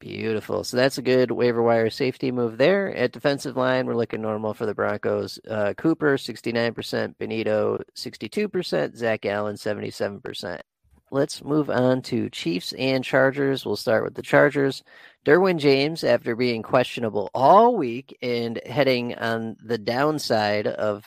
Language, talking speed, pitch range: English, 150 wpm, 110-140 Hz